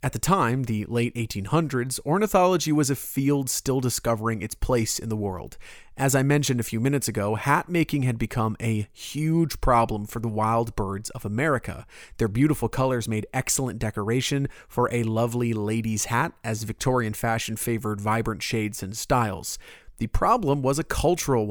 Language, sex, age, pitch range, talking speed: English, male, 30-49, 110-140 Hz, 170 wpm